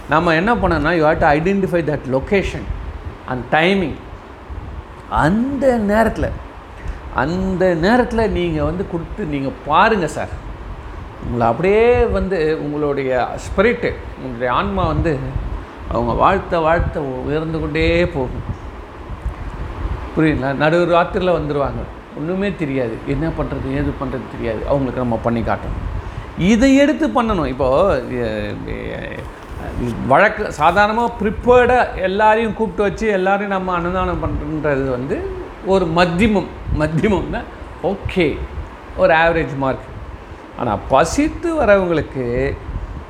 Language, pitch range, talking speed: Tamil, 125-195 Hz, 105 wpm